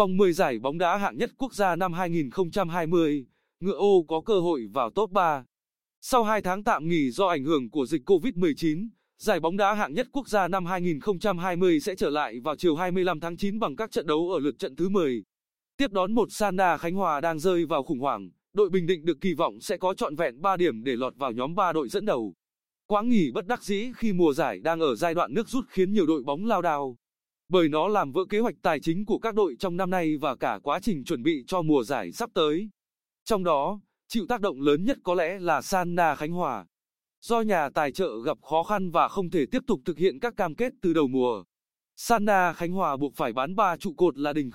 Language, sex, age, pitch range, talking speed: Vietnamese, male, 20-39, 165-210 Hz, 235 wpm